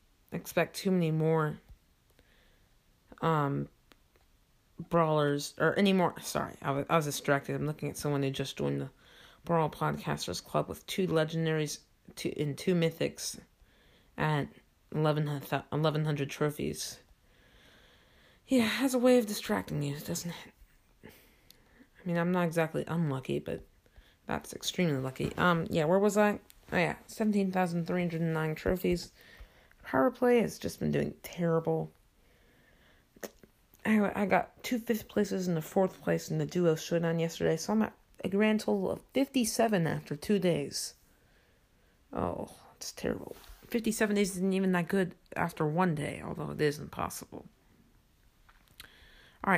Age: 30-49